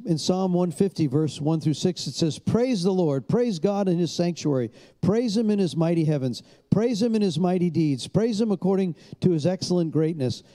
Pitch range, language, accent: 150-195 Hz, English, American